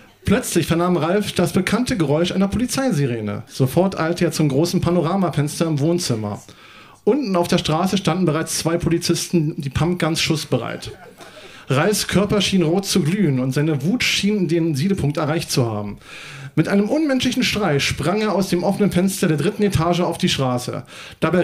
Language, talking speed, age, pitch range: German, 170 wpm, 40-59, 145-185 Hz